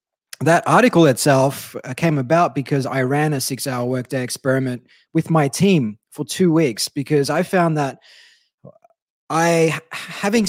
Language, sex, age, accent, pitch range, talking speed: English, male, 20-39, Australian, 140-175 Hz, 135 wpm